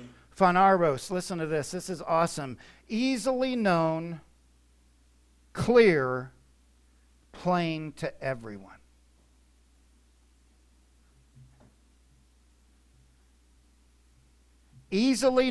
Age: 50-69